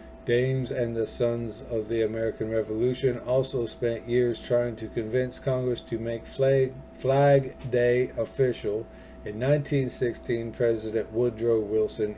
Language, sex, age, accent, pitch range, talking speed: English, male, 50-69, American, 105-125 Hz, 130 wpm